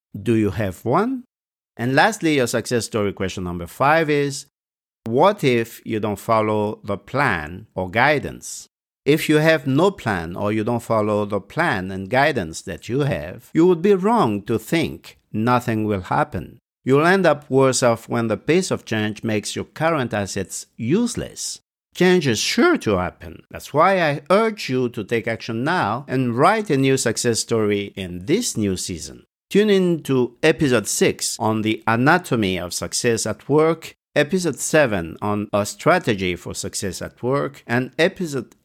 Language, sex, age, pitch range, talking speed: English, male, 50-69, 105-140 Hz, 170 wpm